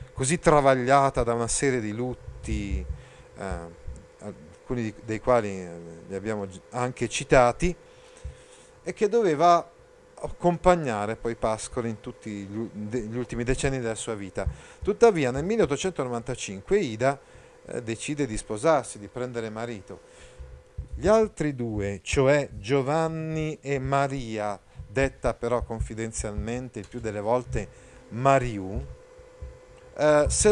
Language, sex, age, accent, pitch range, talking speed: Italian, male, 40-59, native, 115-165 Hz, 110 wpm